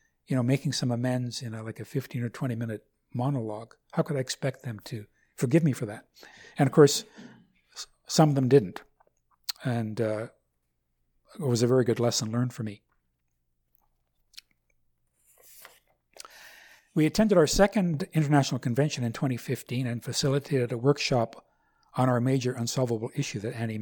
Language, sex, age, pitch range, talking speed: English, male, 60-79, 120-145 Hz, 150 wpm